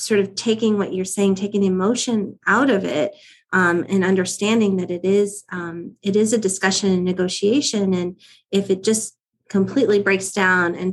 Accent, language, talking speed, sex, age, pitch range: American, English, 170 wpm, female, 30-49, 180-205 Hz